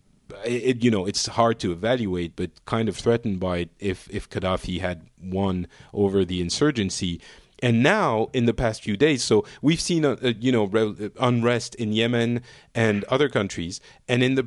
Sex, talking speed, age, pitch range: male, 170 wpm, 40-59, 100-125 Hz